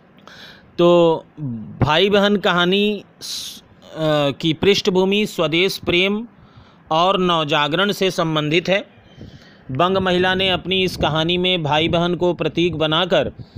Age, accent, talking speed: 40-59, native, 110 wpm